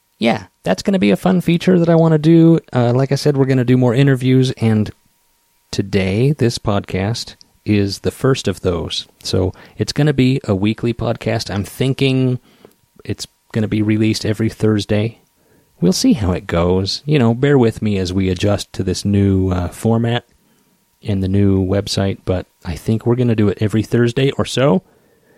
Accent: American